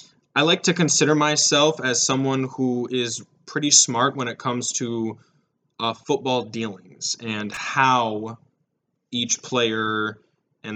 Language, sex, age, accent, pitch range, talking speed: English, male, 20-39, American, 110-145 Hz, 130 wpm